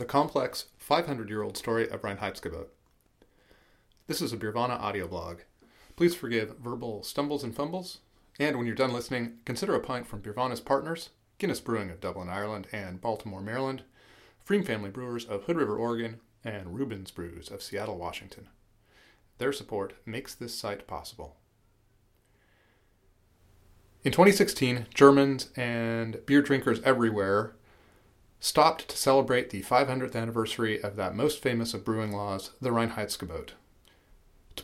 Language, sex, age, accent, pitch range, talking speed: English, male, 30-49, American, 105-130 Hz, 135 wpm